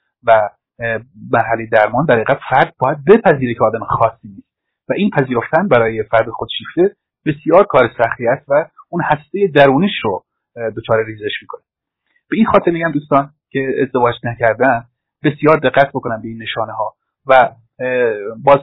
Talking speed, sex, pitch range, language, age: 160 wpm, male, 115-135 Hz, Persian, 30-49